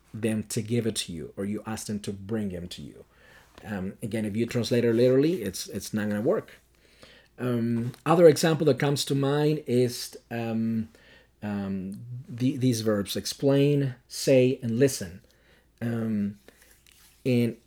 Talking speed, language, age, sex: 160 wpm, English, 40-59, male